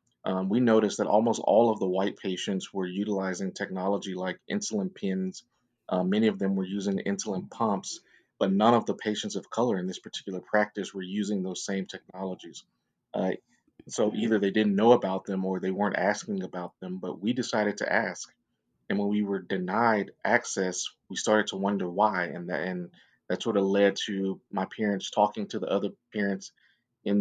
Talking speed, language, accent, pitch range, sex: 185 wpm, English, American, 95-105 Hz, male